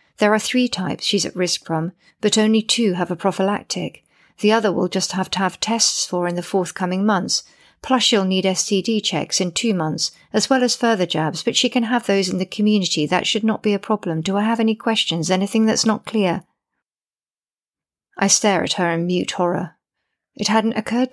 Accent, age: British, 50-69